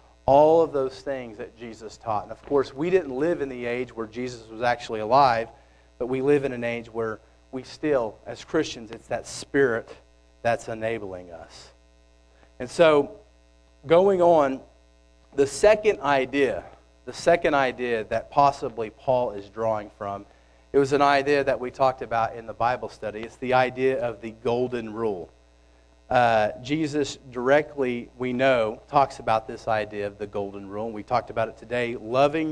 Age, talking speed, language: 40-59, 170 wpm, English